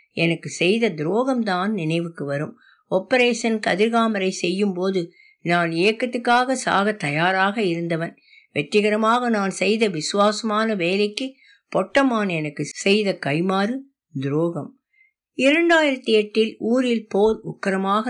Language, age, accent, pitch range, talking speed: Tamil, 60-79, native, 170-235 Hz, 95 wpm